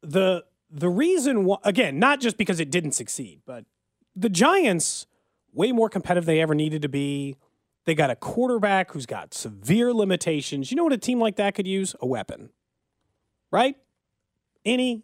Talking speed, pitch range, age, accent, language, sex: 175 wpm, 170-265 Hz, 30-49, American, English, male